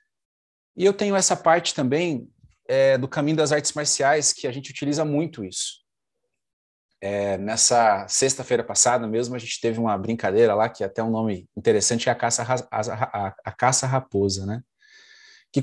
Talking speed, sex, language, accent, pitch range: 170 wpm, male, Portuguese, Brazilian, 125-155 Hz